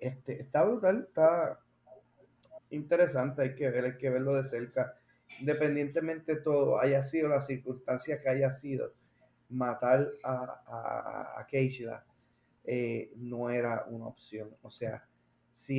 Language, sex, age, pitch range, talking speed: Spanish, male, 30-49, 125-140 Hz, 135 wpm